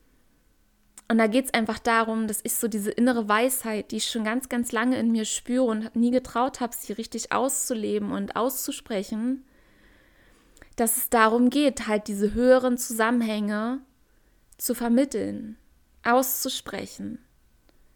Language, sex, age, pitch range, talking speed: German, female, 20-39, 210-240 Hz, 135 wpm